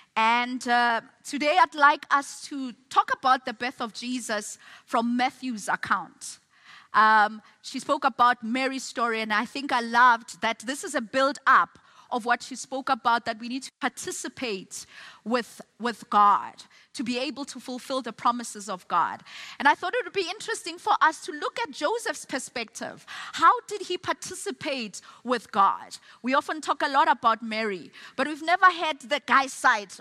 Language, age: English, 30-49